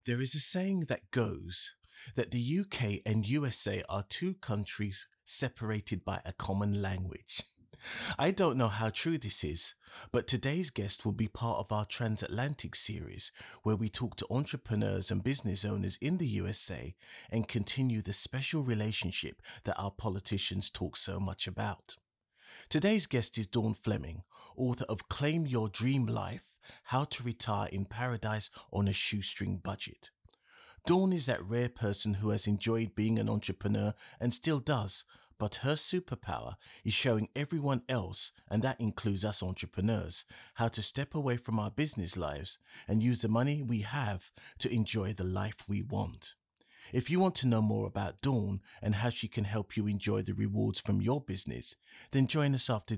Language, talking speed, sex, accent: English, 170 wpm, male, British